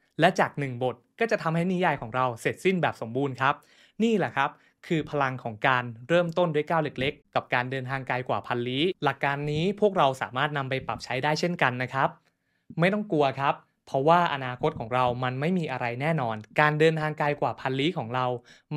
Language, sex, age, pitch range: Thai, male, 20-39, 125-165 Hz